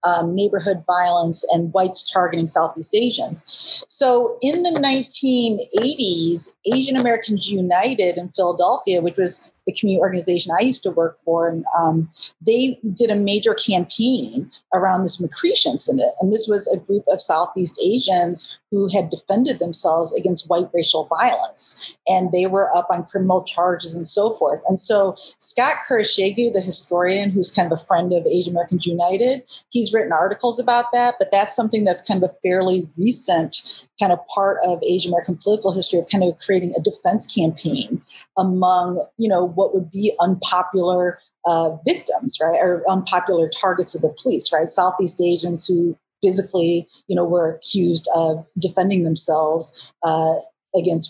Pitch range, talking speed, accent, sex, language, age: 170-205 Hz, 160 wpm, American, female, English, 40-59